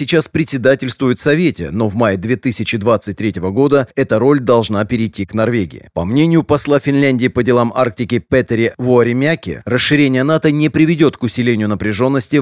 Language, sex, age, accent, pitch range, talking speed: Russian, male, 30-49, native, 110-140 Hz, 145 wpm